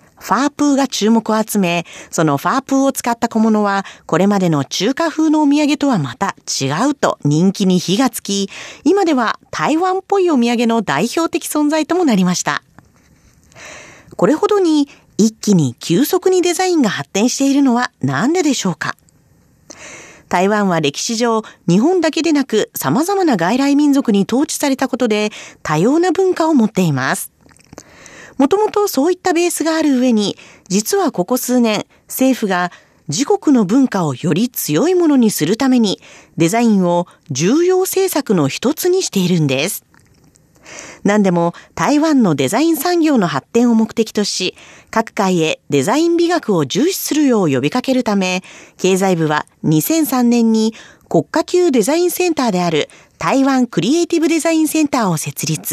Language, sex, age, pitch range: Japanese, female, 40-59, 190-310 Hz